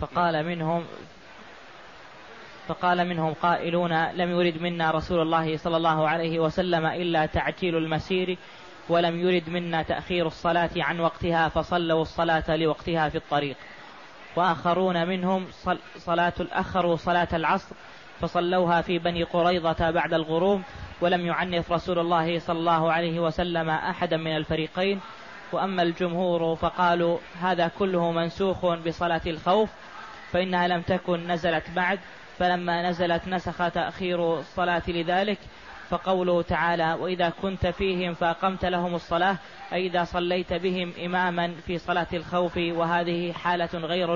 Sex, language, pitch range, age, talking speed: female, Arabic, 170-180 Hz, 20-39, 125 wpm